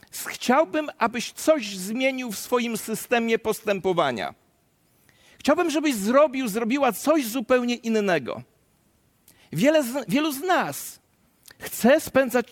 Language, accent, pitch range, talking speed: Polish, native, 190-255 Hz, 100 wpm